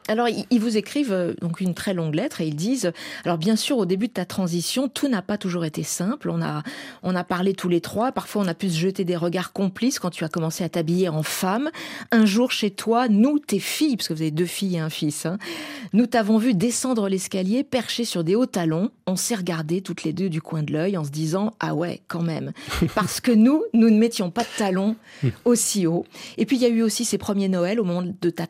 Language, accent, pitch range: French, French, 175-230 Hz